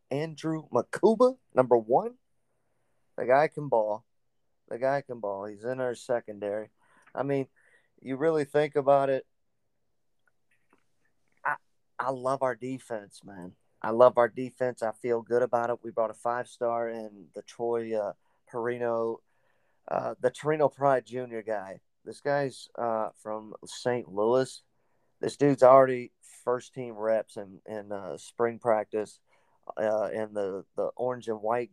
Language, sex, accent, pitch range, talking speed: English, male, American, 110-135 Hz, 145 wpm